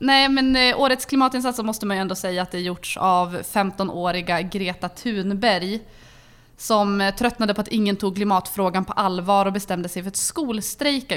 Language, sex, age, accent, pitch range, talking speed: English, female, 20-39, Swedish, 185-220 Hz, 170 wpm